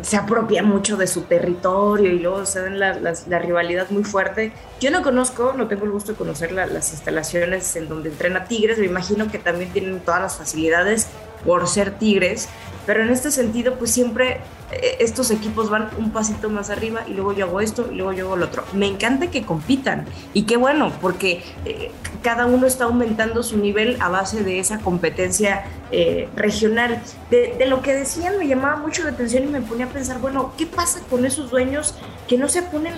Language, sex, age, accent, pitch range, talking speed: Spanish, female, 20-39, Mexican, 195-255 Hz, 205 wpm